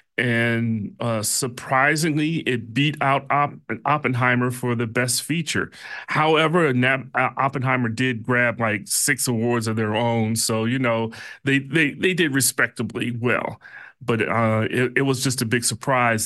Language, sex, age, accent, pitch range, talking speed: English, male, 30-49, American, 115-140 Hz, 145 wpm